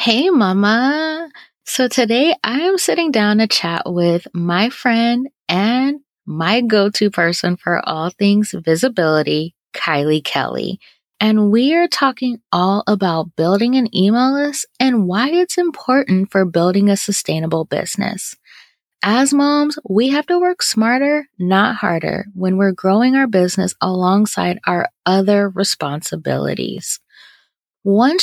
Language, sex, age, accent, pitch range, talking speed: English, female, 20-39, American, 180-250 Hz, 130 wpm